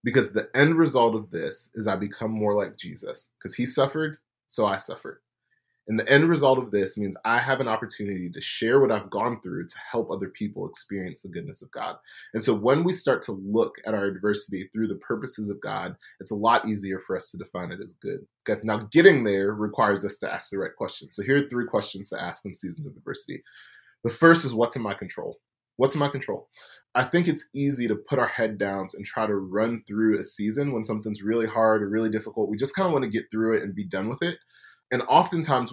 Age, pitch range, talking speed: 20-39, 105-135 Hz, 235 wpm